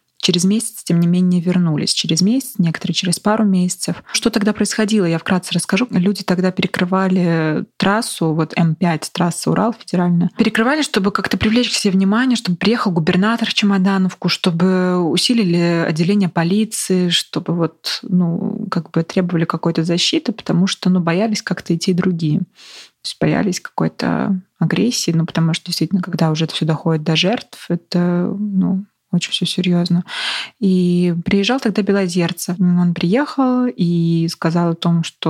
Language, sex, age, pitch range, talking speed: Russian, female, 20-39, 170-210 Hz, 150 wpm